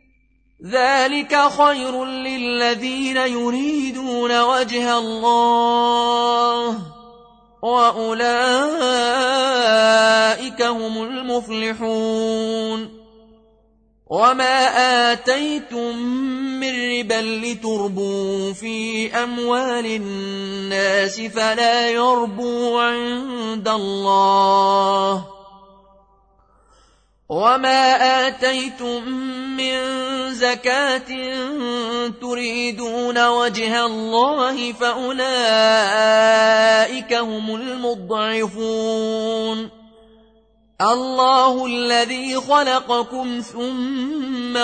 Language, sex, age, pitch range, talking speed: Arabic, male, 30-49, 220-255 Hz, 45 wpm